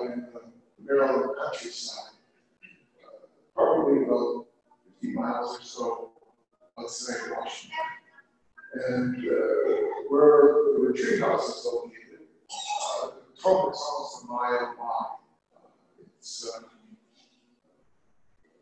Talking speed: 105 wpm